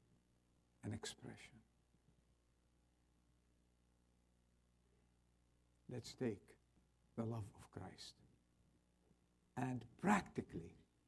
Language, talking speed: English, 55 wpm